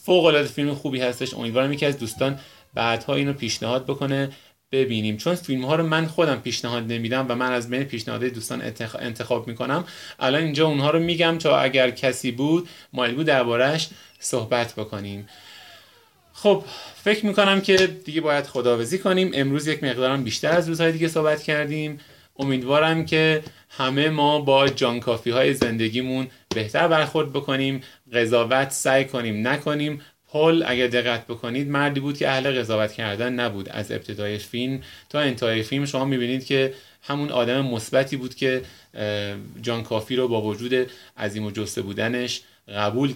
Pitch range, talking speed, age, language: 115-140 Hz, 155 wpm, 30-49, Persian